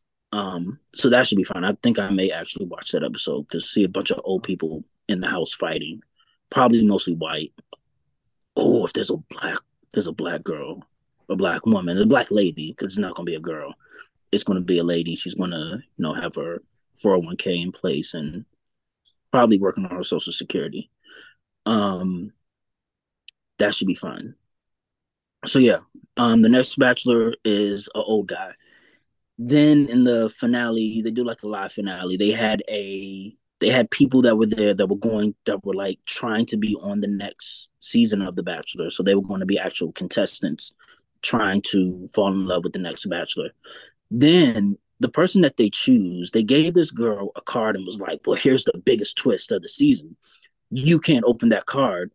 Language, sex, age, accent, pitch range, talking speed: English, male, 20-39, American, 95-150 Hz, 190 wpm